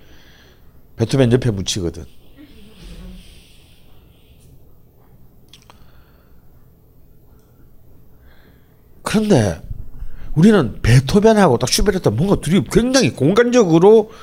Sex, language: male, Korean